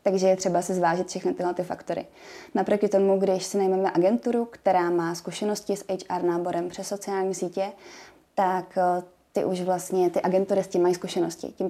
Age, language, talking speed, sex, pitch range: 20-39, Czech, 180 wpm, female, 170-185 Hz